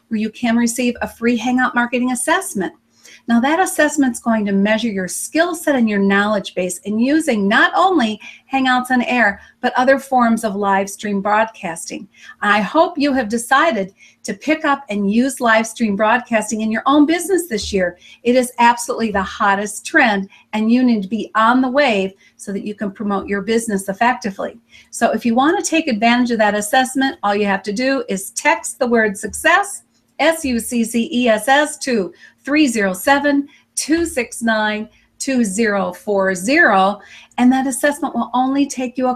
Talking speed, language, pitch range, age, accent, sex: 165 wpm, English, 205-260 Hz, 50-69, American, female